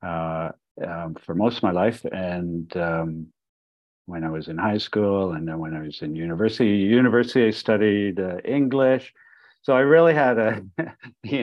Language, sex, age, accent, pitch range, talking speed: English, male, 50-69, American, 90-115 Hz, 175 wpm